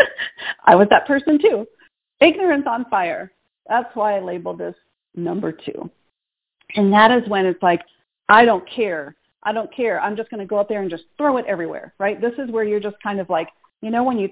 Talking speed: 220 wpm